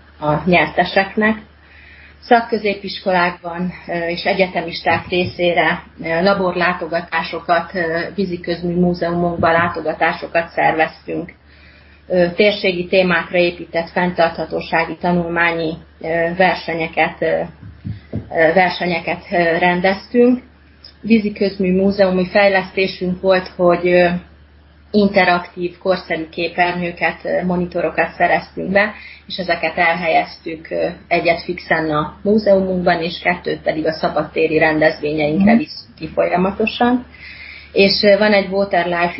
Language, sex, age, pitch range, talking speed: Hungarian, female, 30-49, 165-190 Hz, 75 wpm